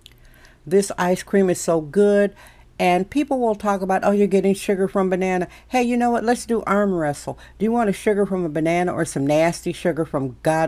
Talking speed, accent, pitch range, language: 220 wpm, American, 160-210 Hz, English